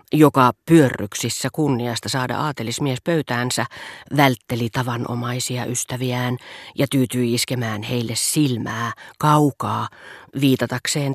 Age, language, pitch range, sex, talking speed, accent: 40-59, Finnish, 120-150 Hz, female, 85 wpm, native